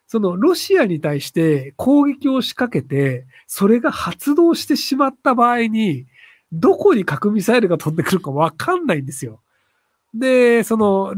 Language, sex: Japanese, male